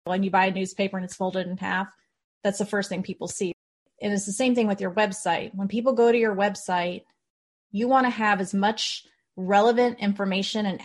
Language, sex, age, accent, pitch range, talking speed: English, female, 30-49, American, 190-215 Hz, 215 wpm